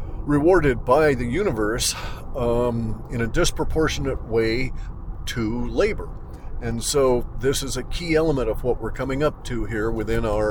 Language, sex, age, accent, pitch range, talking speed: English, male, 50-69, American, 110-130 Hz, 155 wpm